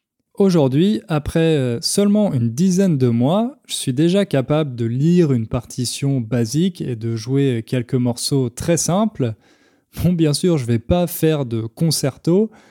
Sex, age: male, 20-39